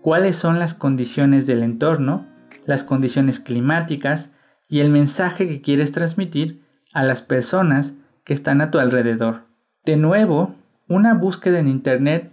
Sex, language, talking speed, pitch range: male, Spanish, 140 wpm, 140-170 Hz